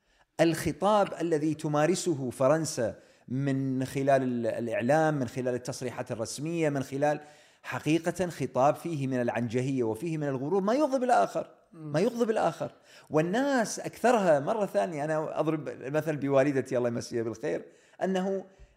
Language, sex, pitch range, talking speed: Arabic, male, 125-175 Hz, 125 wpm